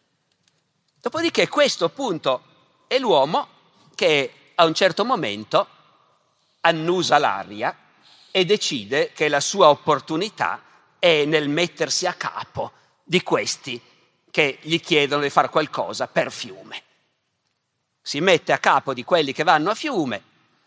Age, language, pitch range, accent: 50-69, Italian, 155-210 Hz, native